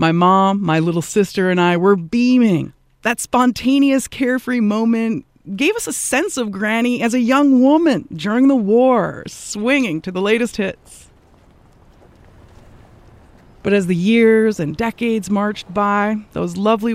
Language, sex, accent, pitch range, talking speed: English, female, American, 155-220 Hz, 145 wpm